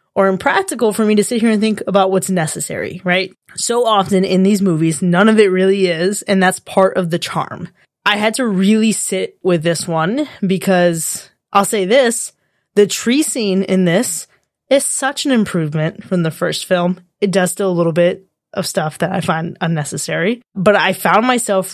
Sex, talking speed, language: female, 195 wpm, English